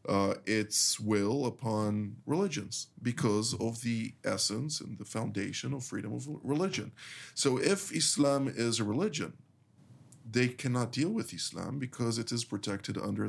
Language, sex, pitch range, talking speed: English, male, 105-130 Hz, 145 wpm